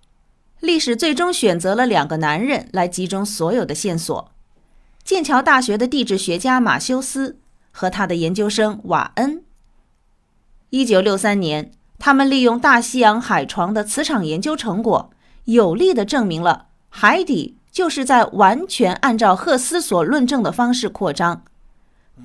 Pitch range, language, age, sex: 185-275 Hz, Chinese, 30-49, female